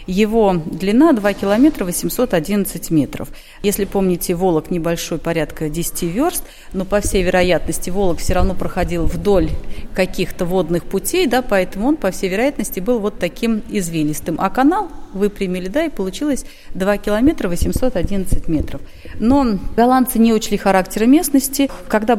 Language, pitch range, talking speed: Russian, 165-215 Hz, 140 wpm